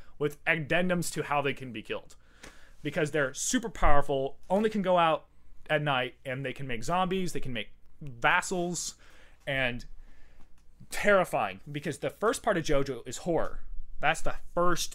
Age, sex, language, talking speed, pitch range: 30-49, male, English, 160 wpm, 120-175 Hz